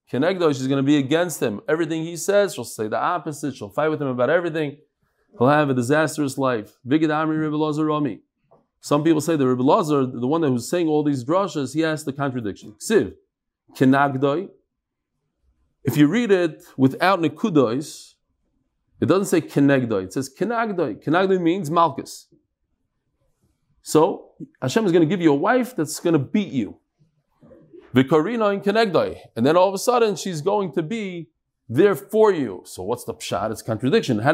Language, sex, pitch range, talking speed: English, male, 135-180 Hz, 170 wpm